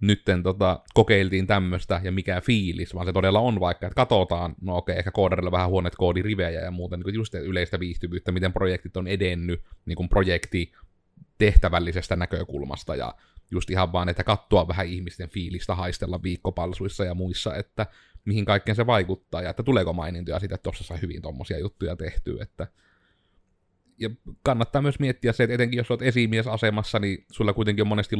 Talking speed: 175 wpm